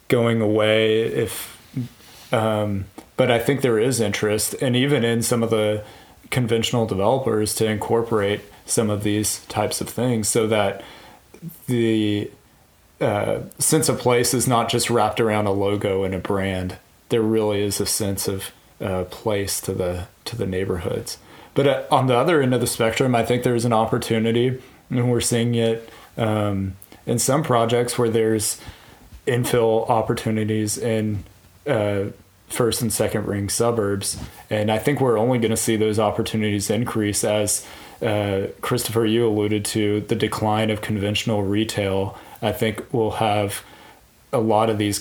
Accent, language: American, English